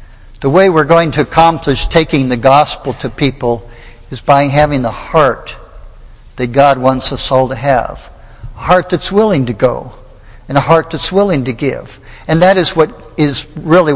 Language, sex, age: English, male, 60-79